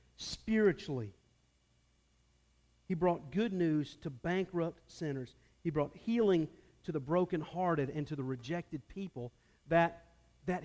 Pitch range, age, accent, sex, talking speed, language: 130-195 Hz, 50-69, American, male, 120 wpm, English